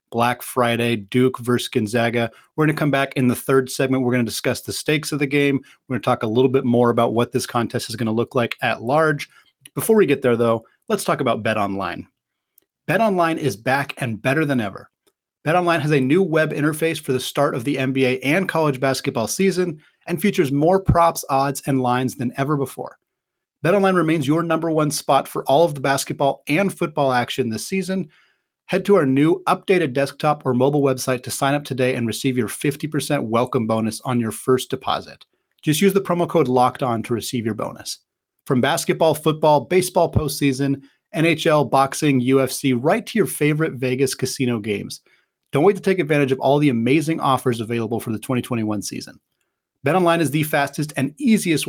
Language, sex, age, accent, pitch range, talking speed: English, male, 30-49, American, 125-160 Hz, 205 wpm